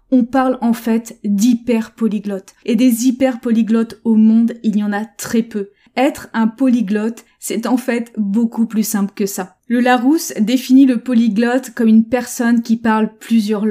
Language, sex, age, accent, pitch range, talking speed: French, female, 20-39, French, 225-265 Hz, 170 wpm